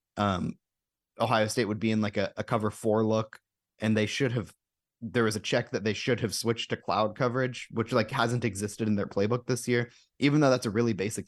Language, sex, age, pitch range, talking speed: English, male, 20-39, 100-120 Hz, 230 wpm